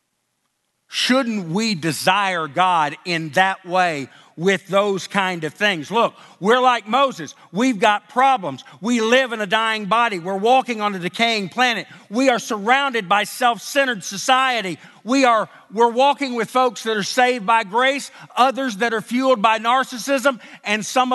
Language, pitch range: English, 150-230 Hz